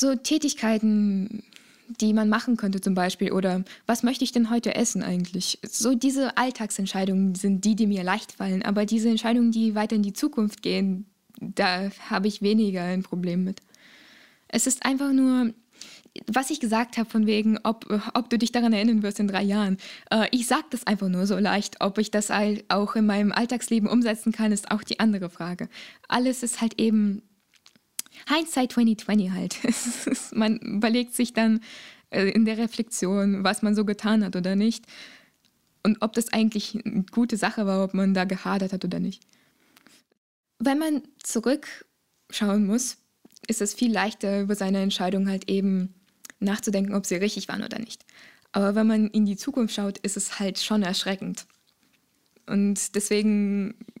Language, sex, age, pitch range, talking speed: German, female, 10-29, 200-235 Hz, 170 wpm